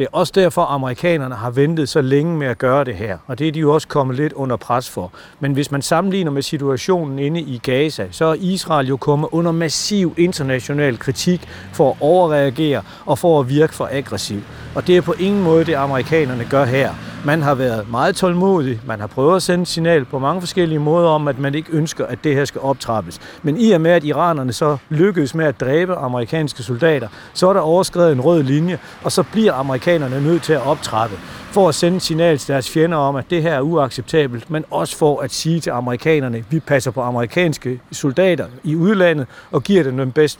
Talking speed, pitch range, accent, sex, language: 225 wpm, 135-165 Hz, native, male, Danish